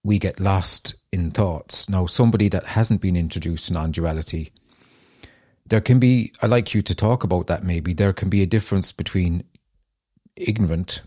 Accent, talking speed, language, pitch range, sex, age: British, 170 wpm, English, 90-105 Hz, male, 30-49